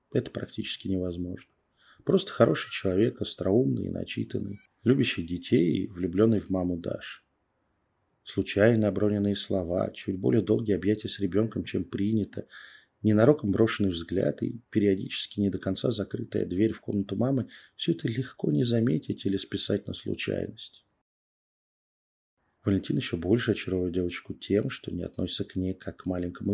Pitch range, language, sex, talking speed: 95-115 Hz, Russian, male, 140 wpm